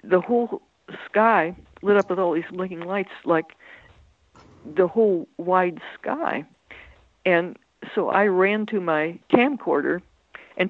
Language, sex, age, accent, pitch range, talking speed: Italian, female, 60-79, American, 160-200 Hz, 130 wpm